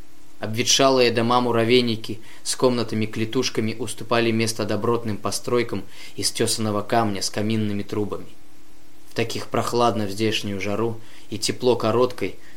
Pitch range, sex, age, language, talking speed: 110-125 Hz, male, 20-39, Russian, 115 wpm